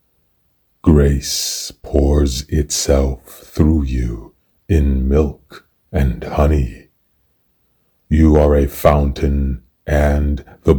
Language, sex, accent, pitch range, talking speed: English, male, American, 70-75 Hz, 85 wpm